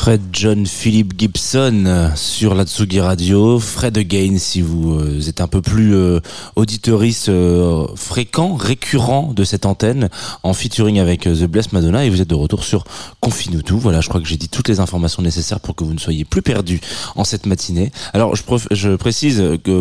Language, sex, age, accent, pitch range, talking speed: French, male, 20-39, French, 85-115 Hz, 190 wpm